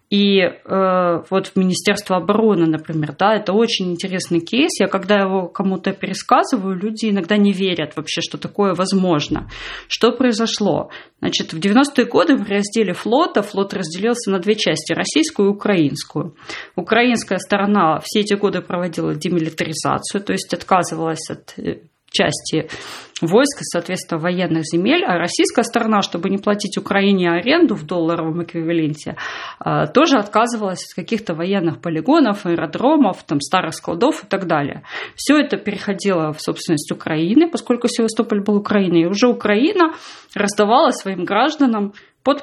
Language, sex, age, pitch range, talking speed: Russian, female, 30-49, 175-240 Hz, 135 wpm